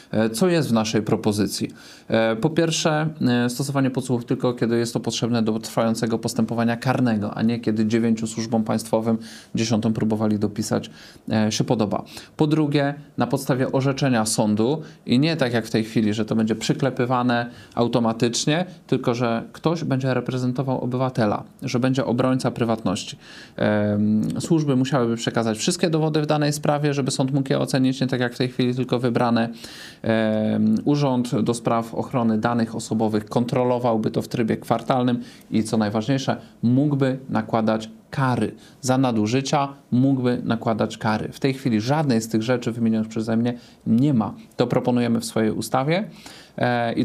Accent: native